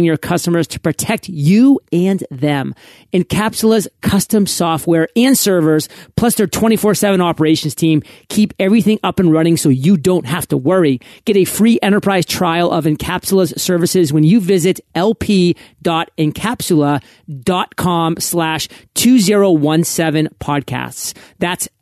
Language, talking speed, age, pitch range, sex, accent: English, 120 wpm, 40-59, 155-200 Hz, male, American